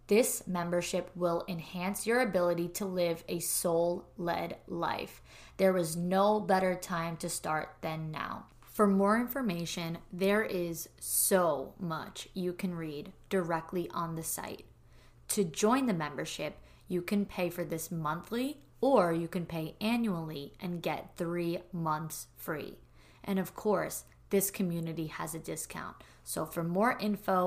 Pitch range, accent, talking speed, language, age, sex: 165-195 Hz, American, 145 wpm, English, 20-39, female